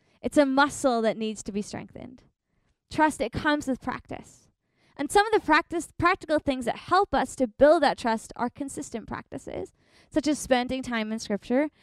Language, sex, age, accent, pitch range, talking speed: English, female, 20-39, American, 220-290 Hz, 180 wpm